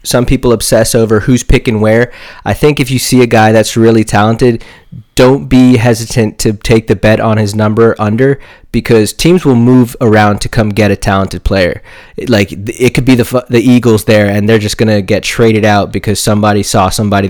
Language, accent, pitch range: English, American, 110-125 Hz